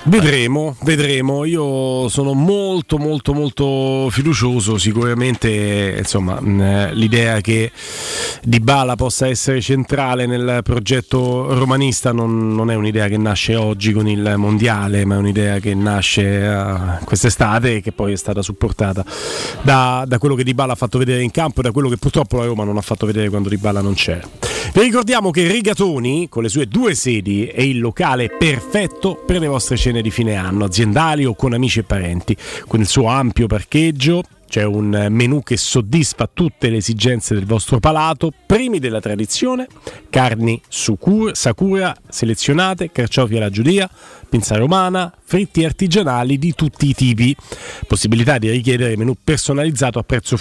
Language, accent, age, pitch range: Italian, native, 30-49, 110-145 Hz